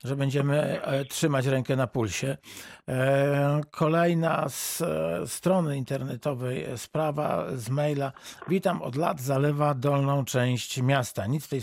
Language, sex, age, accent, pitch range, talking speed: Polish, male, 50-69, native, 125-145 Hz, 120 wpm